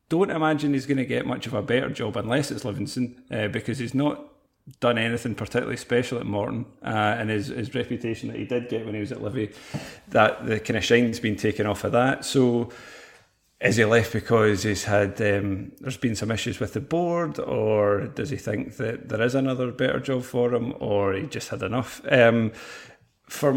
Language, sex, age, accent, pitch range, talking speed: English, male, 40-59, British, 105-125 Hz, 210 wpm